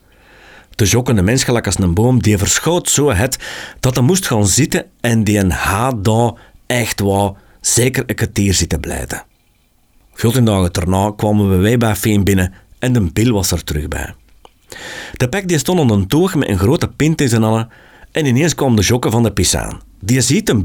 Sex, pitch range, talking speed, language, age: male, 95-125 Hz, 200 wpm, Dutch, 50-69